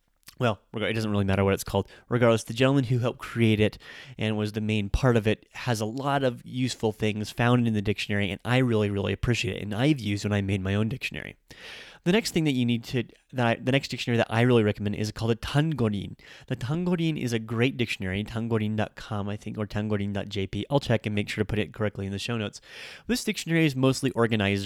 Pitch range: 105-125 Hz